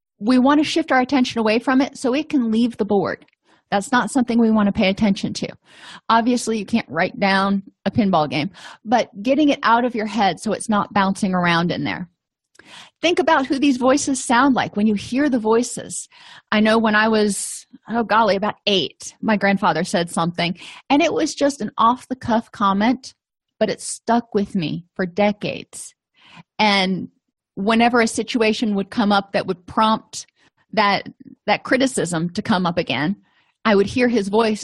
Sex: female